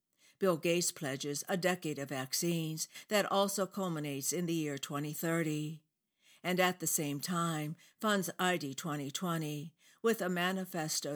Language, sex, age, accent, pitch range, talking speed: English, female, 60-79, American, 150-185 Hz, 130 wpm